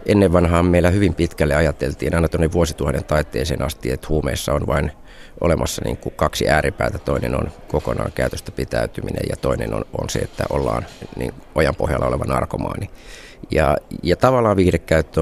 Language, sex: Finnish, male